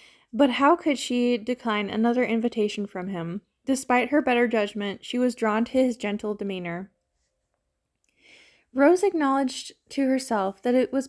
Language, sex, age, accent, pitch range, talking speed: English, female, 20-39, American, 215-270 Hz, 145 wpm